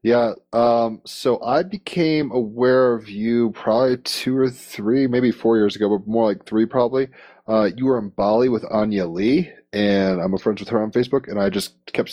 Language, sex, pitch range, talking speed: English, male, 100-120 Hz, 205 wpm